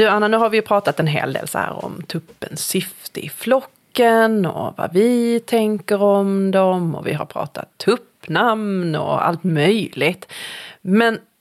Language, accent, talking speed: Swedish, native, 170 wpm